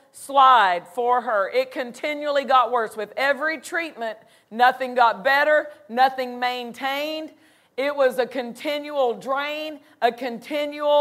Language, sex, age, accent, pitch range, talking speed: English, female, 40-59, American, 245-295 Hz, 120 wpm